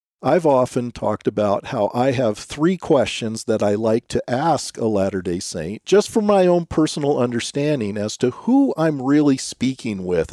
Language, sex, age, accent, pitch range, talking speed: English, male, 50-69, American, 110-165 Hz, 175 wpm